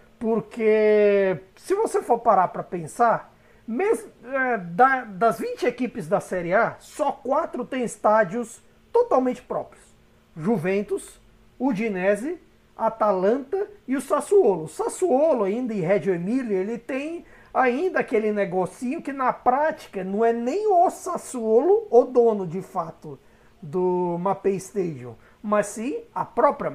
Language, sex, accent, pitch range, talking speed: Portuguese, male, Brazilian, 200-250 Hz, 130 wpm